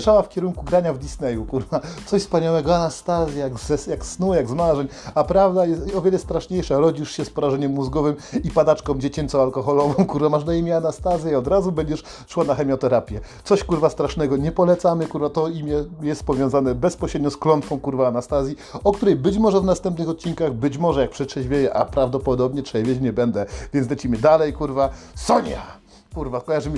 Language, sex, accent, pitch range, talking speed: Polish, male, native, 135-170 Hz, 180 wpm